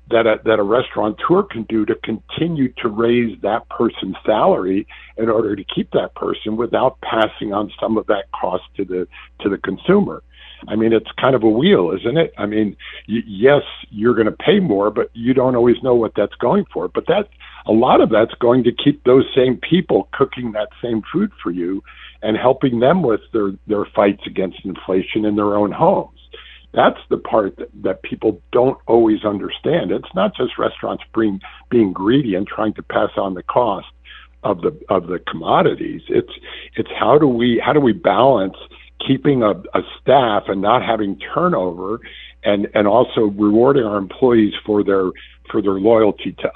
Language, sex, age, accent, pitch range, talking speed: English, male, 50-69, American, 100-120 Hz, 190 wpm